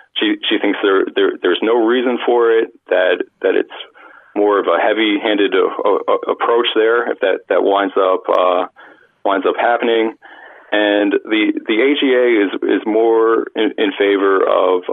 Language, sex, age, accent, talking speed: English, male, 40-59, American, 170 wpm